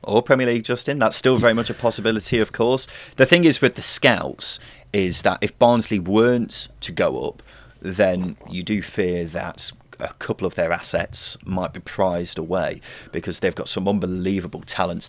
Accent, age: British, 30-49